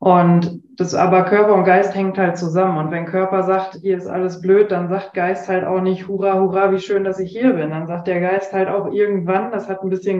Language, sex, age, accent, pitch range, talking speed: German, female, 20-39, German, 185-205 Hz, 245 wpm